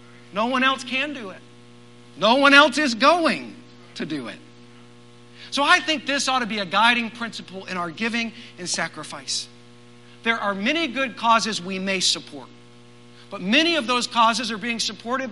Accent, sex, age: American, male, 50-69